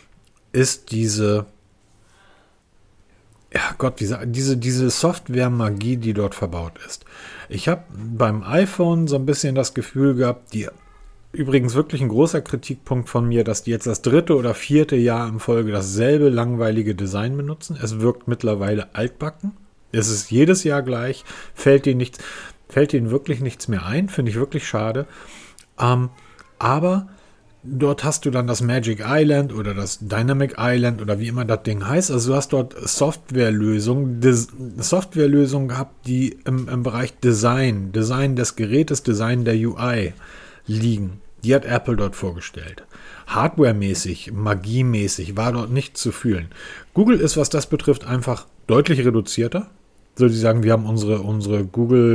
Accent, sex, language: German, male, German